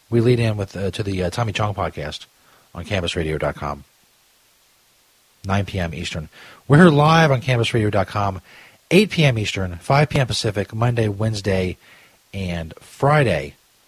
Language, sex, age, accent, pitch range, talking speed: English, male, 40-59, American, 95-155 Hz, 135 wpm